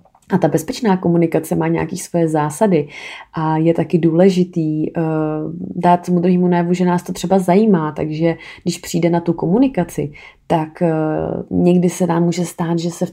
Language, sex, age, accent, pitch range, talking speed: Czech, female, 30-49, native, 165-180 Hz, 175 wpm